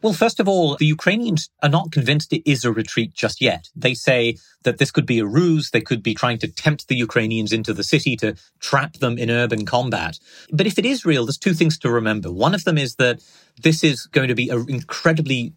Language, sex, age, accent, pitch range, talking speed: English, male, 30-49, British, 120-160 Hz, 240 wpm